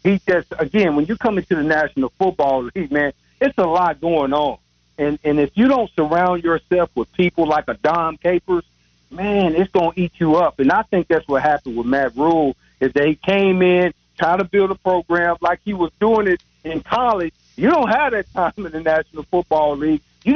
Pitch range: 150-190 Hz